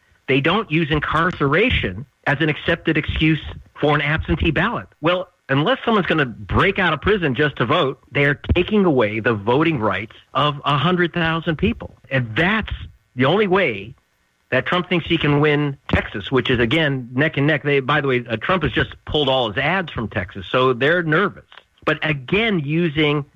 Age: 50-69